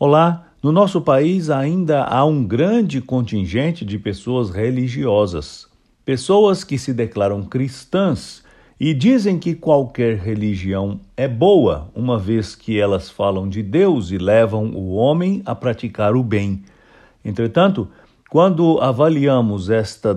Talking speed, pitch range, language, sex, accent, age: 130 wpm, 100-140 Hz, English, male, Brazilian, 60-79